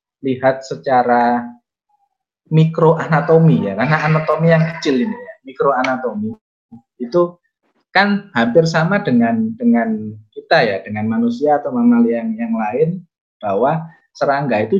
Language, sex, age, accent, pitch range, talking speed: Indonesian, male, 20-39, native, 120-170 Hz, 120 wpm